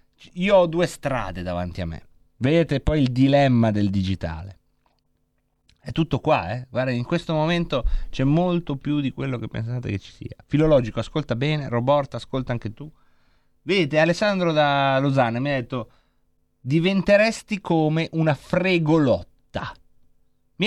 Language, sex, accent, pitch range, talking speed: Italian, male, native, 120-175 Hz, 145 wpm